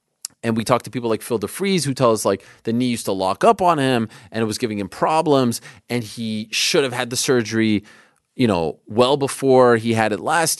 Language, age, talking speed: English, 30-49, 225 wpm